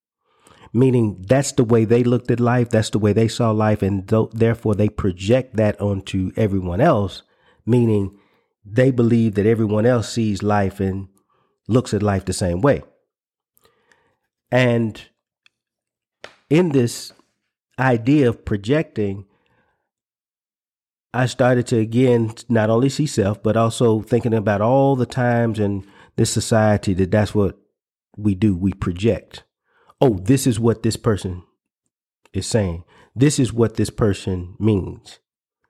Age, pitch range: 40-59, 100-125 Hz